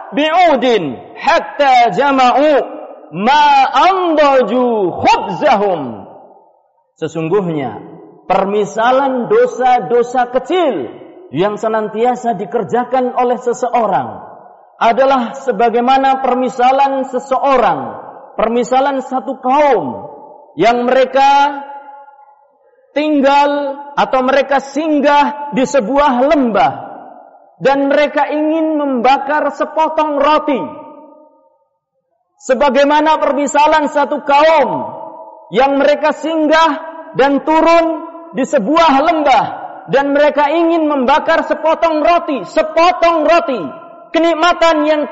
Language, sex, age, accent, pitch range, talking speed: Indonesian, male, 40-59, native, 255-315 Hz, 75 wpm